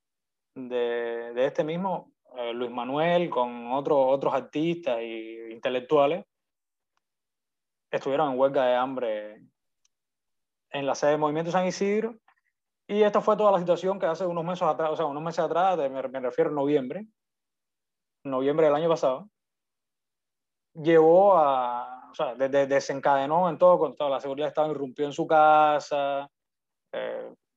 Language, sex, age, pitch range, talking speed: Spanish, male, 20-39, 130-170 Hz, 150 wpm